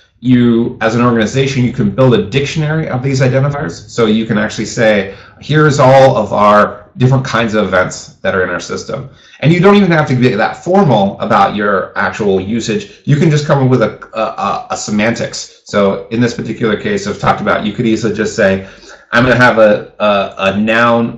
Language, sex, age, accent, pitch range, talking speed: English, male, 30-49, American, 105-130 Hz, 205 wpm